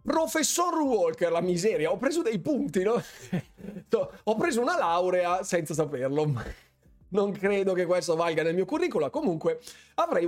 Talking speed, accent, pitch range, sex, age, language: 150 wpm, native, 140-200 Hz, male, 30-49, Italian